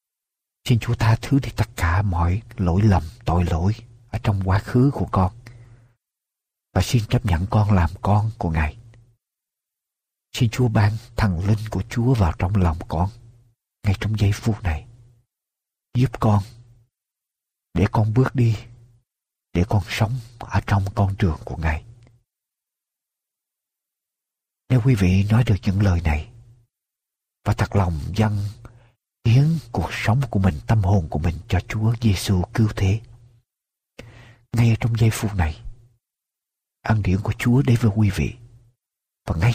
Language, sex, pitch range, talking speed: Vietnamese, male, 95-120 Hz, 150 wpm